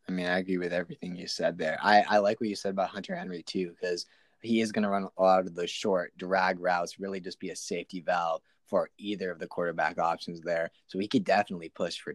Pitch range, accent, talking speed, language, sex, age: 95-115 Hz, American, 250 wpm, English, male, 20-39